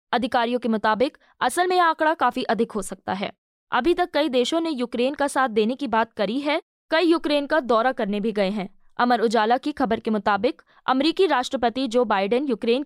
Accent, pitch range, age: native, 230-285 Hz, 20-39